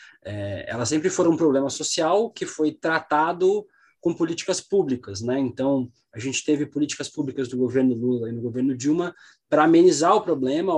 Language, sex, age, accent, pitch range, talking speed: Portuguese, male, 20-39, Brazilian, 110-145 Hz, 175 wpm